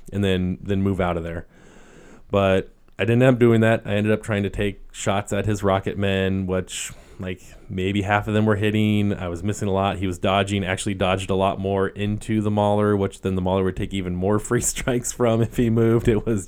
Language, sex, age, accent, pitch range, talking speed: English, male, 20-39, American, 95-110 Hz, 235 wpm